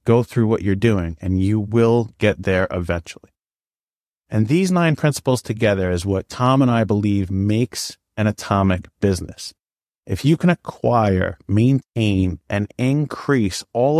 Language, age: English, 30-49